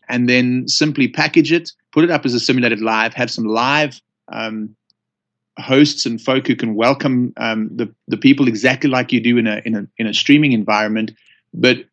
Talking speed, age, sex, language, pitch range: 195 wpm, 30-49, male, English, 115-135 Hz